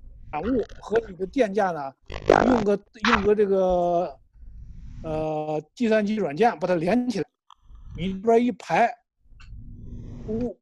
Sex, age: male, 60-79